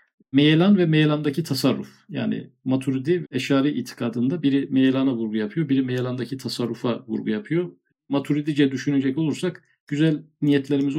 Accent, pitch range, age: native, 130-160 Hz, 50-69